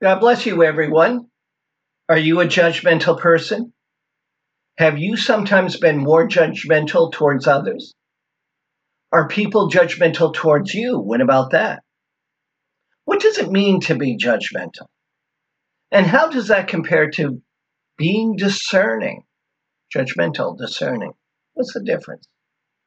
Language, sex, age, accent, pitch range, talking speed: English, male, 50-69, American, 160-220 Hz, 120 wpm